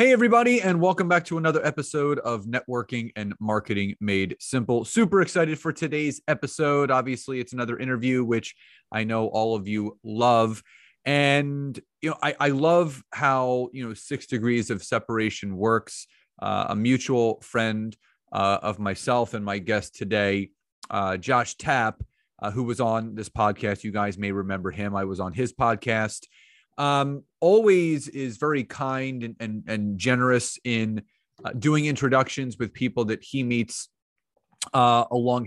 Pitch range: 110-135 Hz